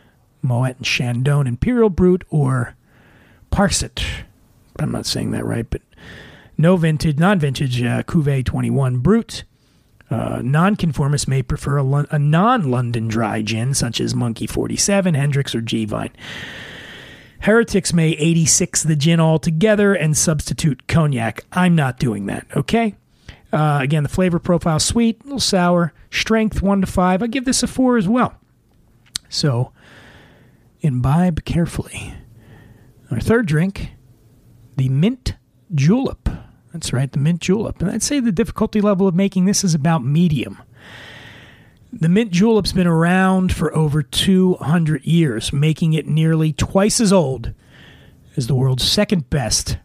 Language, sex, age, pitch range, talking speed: English, male, 40-59, 130-185 Hz, 140 wpm